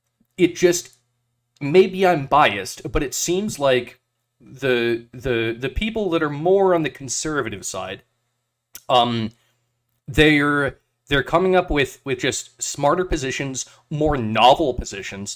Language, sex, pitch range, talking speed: English, male, 120-165 Hz, 130 wpm